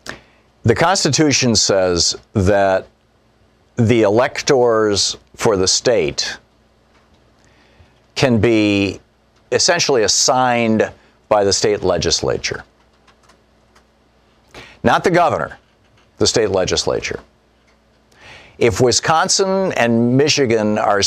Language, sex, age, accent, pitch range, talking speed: English, male, 50-69, American, 100-130 Hz, 80 wpm